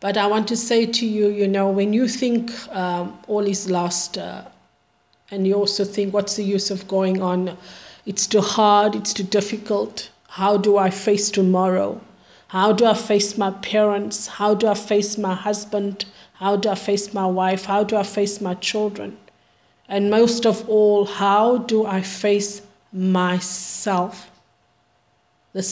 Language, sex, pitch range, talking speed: English, female, 190-220 Hz, 170 wpm